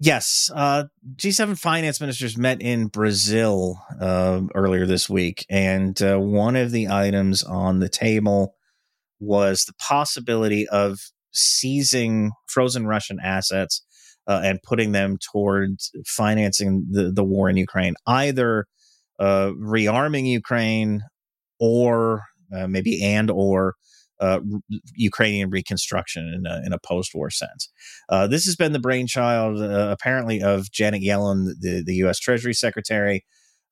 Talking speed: 135 wpm